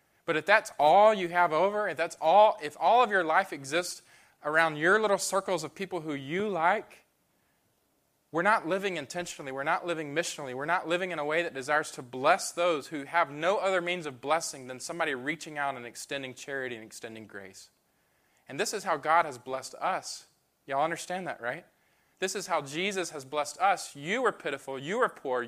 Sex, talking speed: male, 205 wpm